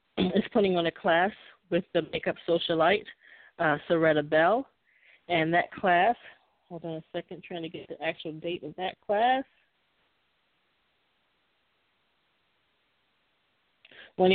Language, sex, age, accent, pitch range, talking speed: English, female, 30-49, American, 155-185 Hz, 120 wpm